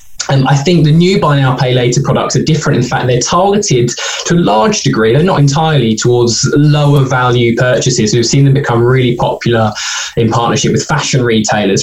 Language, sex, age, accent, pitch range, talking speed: English, male, 20-39, British, 115-140 Hz, 195 wpm